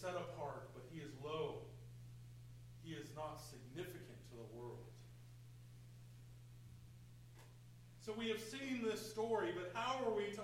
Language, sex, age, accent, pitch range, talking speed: English, male, 40-59, American, 120-205 Hz, 140 wpm